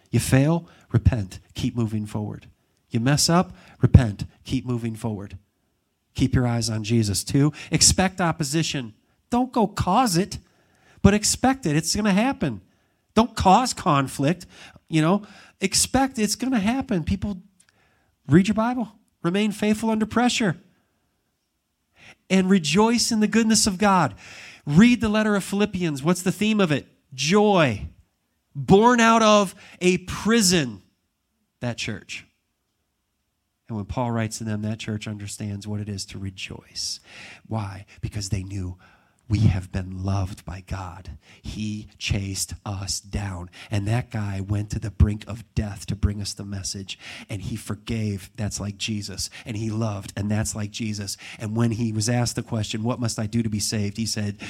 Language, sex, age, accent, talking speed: English, male, 40-59, American, 165 wpm